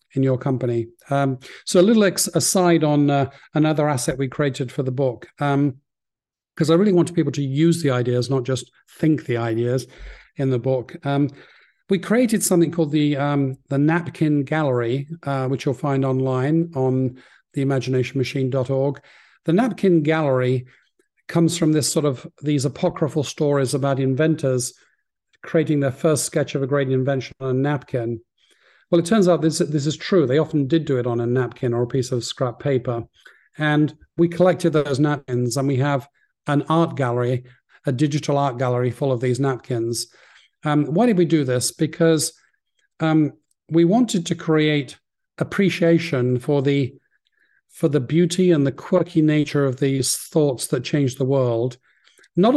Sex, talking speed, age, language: male, 170 wpm, 50-69, English